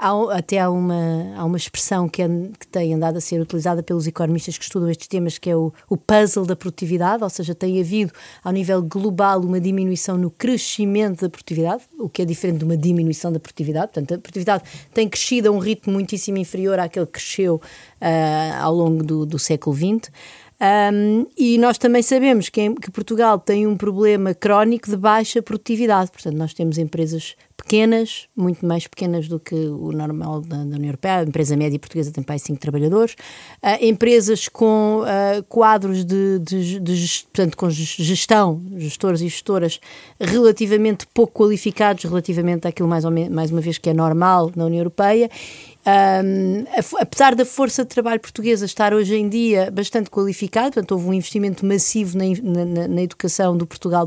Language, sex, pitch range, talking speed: Portuguese, female, 170-215 Hz, 180 wpm